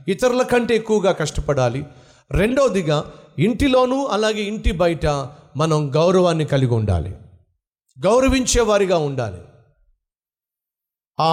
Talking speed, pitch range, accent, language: 85 wpm, 130-190 Hz, native, Telugu